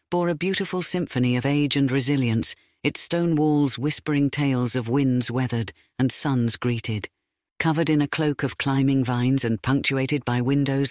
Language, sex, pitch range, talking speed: English, female, 125-170 Hz, 165 wpm